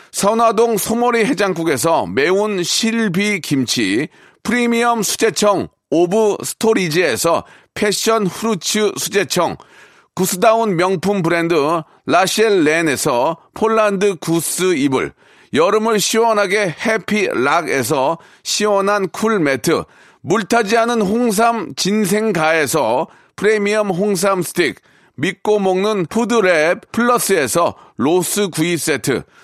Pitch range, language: 180-225 Hz, Korean